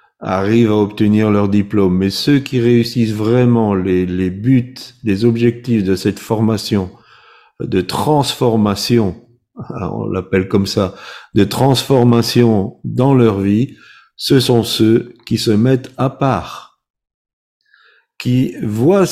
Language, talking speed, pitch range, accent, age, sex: French, 120 wpm, 110-135 Hz, French, 50-69, male